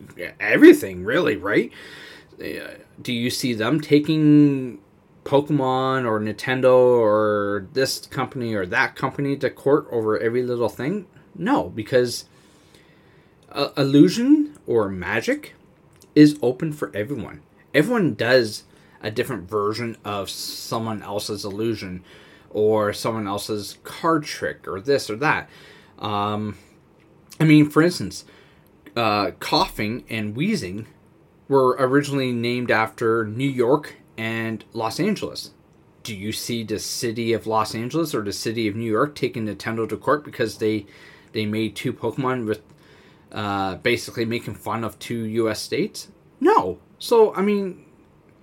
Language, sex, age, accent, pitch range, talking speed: English, male, 20-39, American, 105-150 Hz, 135 wpm